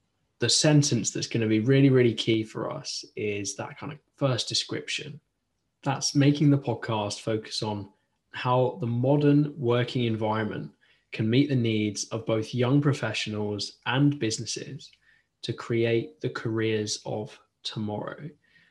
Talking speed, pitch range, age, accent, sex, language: 140 wpm, 110-135 Hz, 10-29, British, male, English